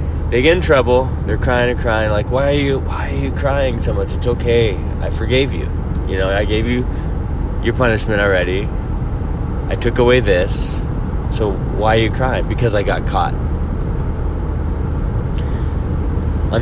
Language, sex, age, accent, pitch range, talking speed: English, male, 20-39, American, 85-115 Hz, 165 wpm